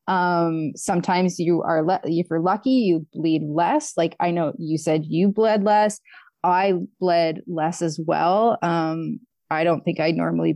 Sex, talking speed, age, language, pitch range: female, 170 wpm, 20-39, English, 165-205 Hz